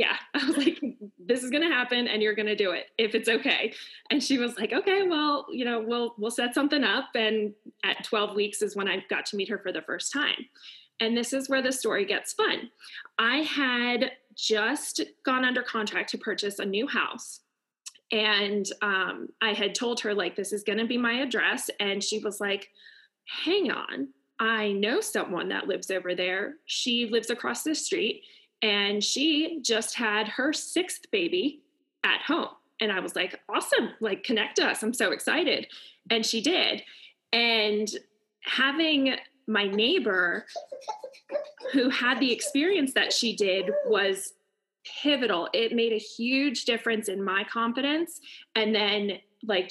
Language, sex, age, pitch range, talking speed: English, female, 20-39, 210-280 Hz, 175 wpm